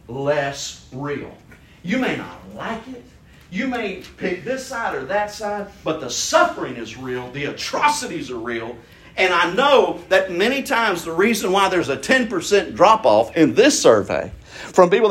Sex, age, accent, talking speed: male, 50-69, American, 165 wpm